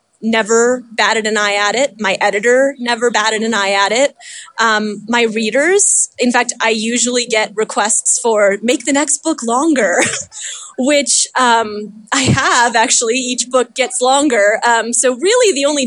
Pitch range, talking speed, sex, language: 225-290 Hz, 165 wpm, female, English